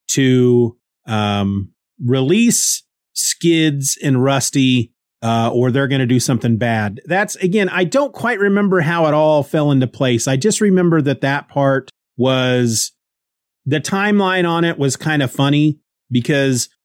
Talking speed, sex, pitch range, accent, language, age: 150 wpm, male, 125-165 Hz, American, English, 30-49